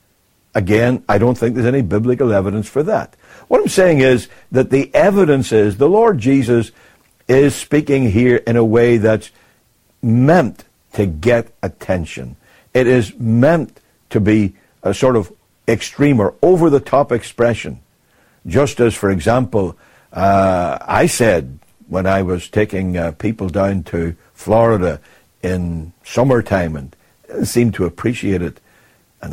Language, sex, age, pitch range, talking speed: English, male, 60-79, 95-120 Hz, 140 wpm